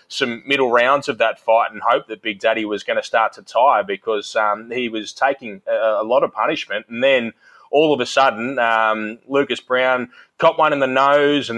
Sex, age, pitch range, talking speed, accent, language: male, 20-39, 110-130 Hz, 220 wpm, Australian, English